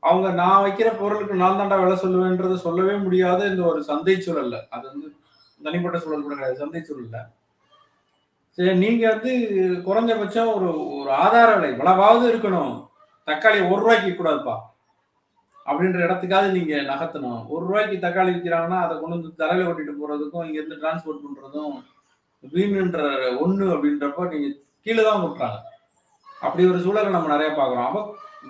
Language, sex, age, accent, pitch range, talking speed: Tamil, male, 30-49, native, 150-195 Hz, 135 wpm